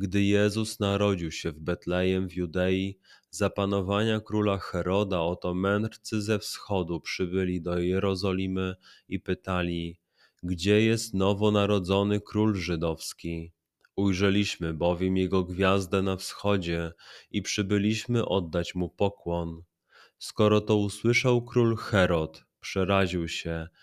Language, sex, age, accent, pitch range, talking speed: Polish, male, 30-49, native, 90-105 Hz, 110 wpm